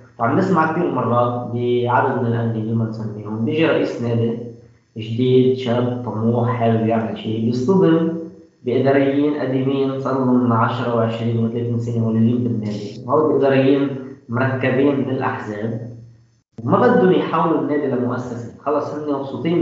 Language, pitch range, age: Arabic, 115-135 Hz, 20-39